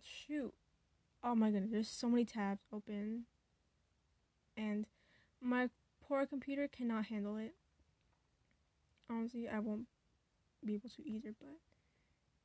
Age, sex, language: 10-29, female, English